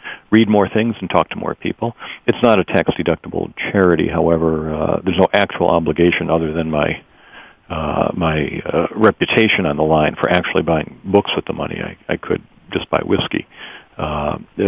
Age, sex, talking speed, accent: 50-69, male, 175 wpm, American